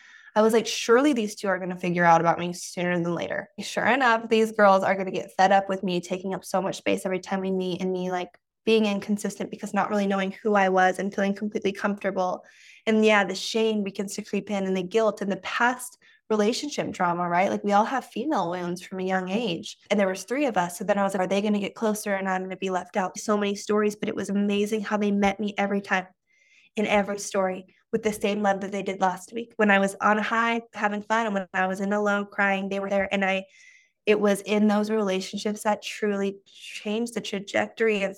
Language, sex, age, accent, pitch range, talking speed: English, female, 10-29, American, 195-225 Hz, 245 wpm